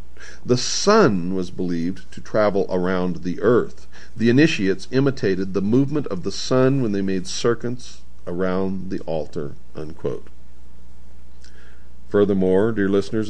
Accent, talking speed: American, 120 wpm